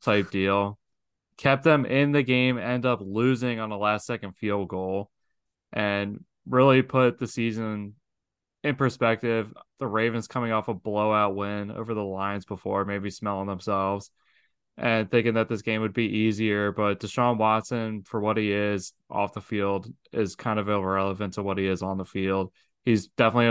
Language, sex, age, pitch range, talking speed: English, male, 20-39, 100-115 Hz, 175 wpm